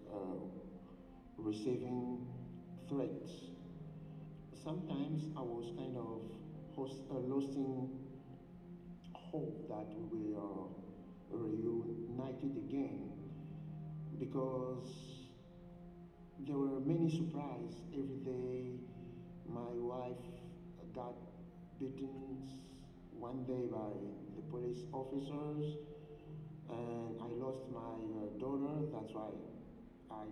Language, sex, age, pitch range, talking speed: English, male, 60-79, 115-155 Hz, 85 wpm